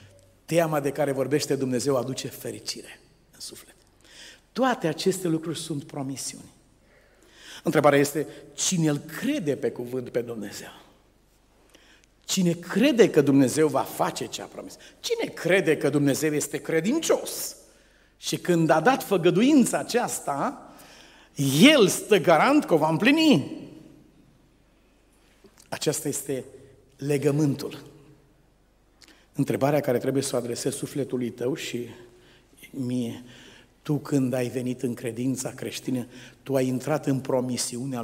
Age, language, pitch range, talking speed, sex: 50-69, Romanian, 125-155 Hz, 120 wpm, male